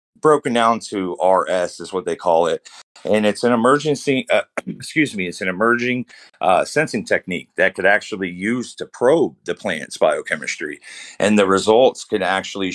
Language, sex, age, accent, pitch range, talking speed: English, male, 30-49, American, 85-100 Hz, 175 wpm